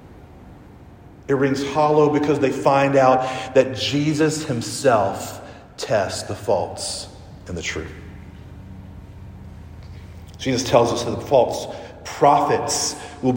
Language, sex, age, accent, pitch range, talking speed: English, male, 40-59, American, 90-135 Hz, 110 wpm